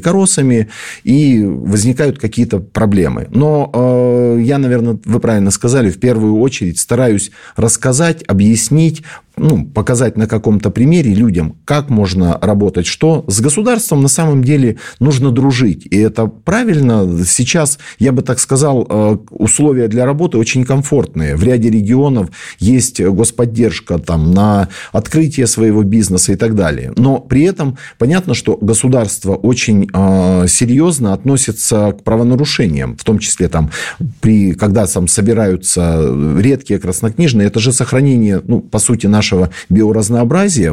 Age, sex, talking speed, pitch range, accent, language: 40-59, male, 125 wpm, 105-130 Hz, native, Russian